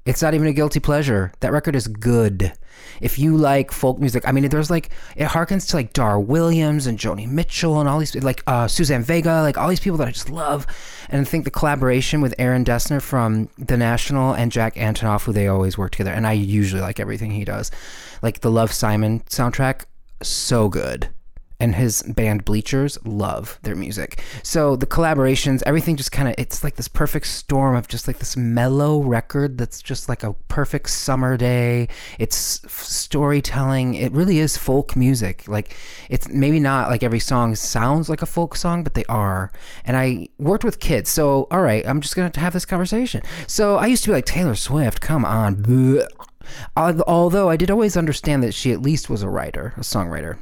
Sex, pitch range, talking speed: male, 105-145 Hz, 200 wpm